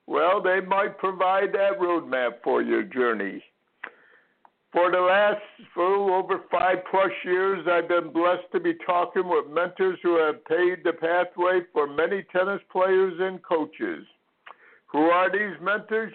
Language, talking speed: English, 150 wpm